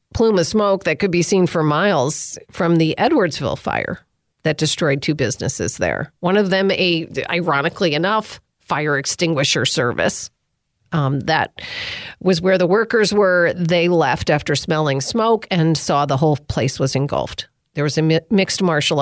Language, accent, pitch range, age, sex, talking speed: English, American, 150-190 Hz, 40-59, female, 165 wpm